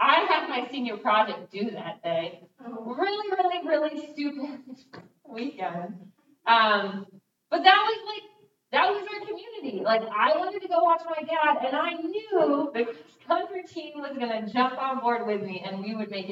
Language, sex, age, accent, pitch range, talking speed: English, female, 20-39, American, 215-325 Hz, 175 wpm